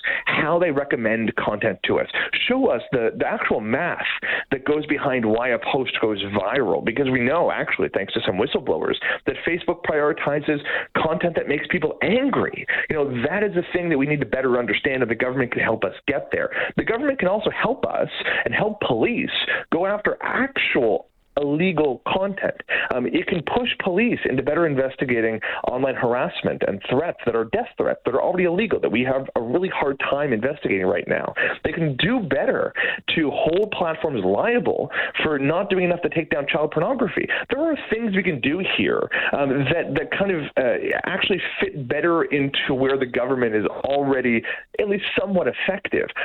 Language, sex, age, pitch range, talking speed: English, male, 40-59, 130-205 Hz, 185 wpm